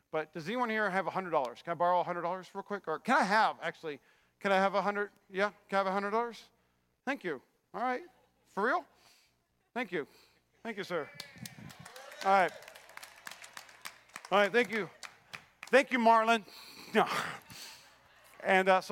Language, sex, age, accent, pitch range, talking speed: English, male, 40-59, American, 195-235 Hz, 180 wpm